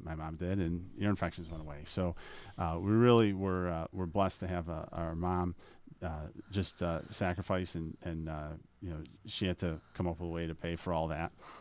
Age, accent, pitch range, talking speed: 40-59, American, 85-100 Hz, 220 wpm